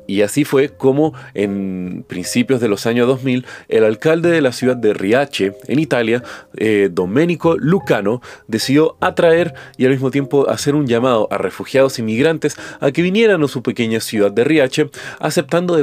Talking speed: 170 wpm